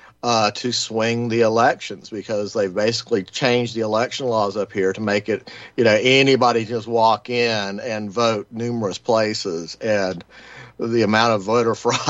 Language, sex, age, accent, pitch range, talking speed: English, male, 50-69, American, 110-130 Hz, 165 wpm